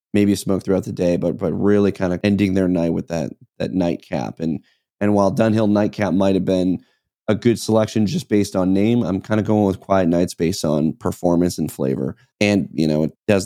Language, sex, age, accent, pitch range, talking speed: English, male, 30-49, American, 90-105 Hz, 220 wpm